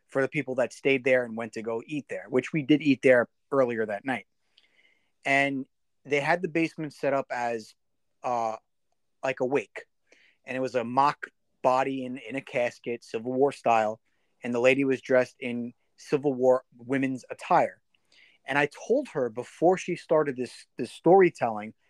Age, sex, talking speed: 30-49, male, 180 wpm